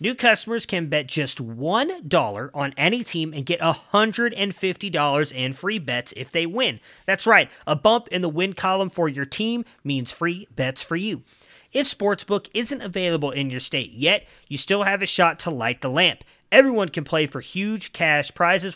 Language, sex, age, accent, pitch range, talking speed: English, male, 30-49, American, 140-190 Hz, 185 wpm